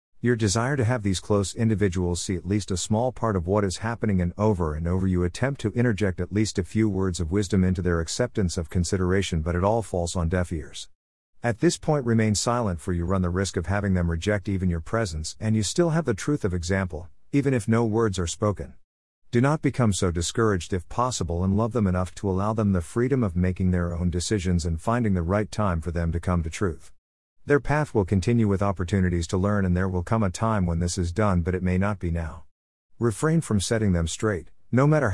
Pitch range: 90-115 Hz